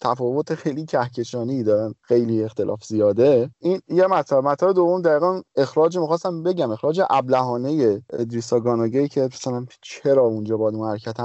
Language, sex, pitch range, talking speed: Persian, male, 125-170 Hz, 145 wpm